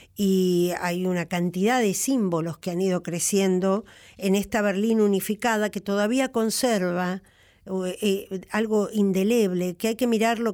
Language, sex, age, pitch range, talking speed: Spanish, female, 50-69, 175-215 Hz, 130 wpm